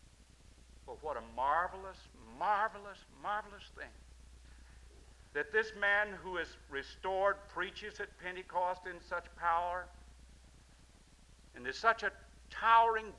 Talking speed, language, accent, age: 110 wpm, English, American, 60-79